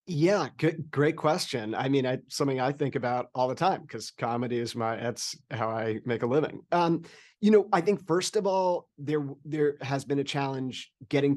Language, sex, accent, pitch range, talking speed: English, male, American, 120-145 Hz, 205 wpm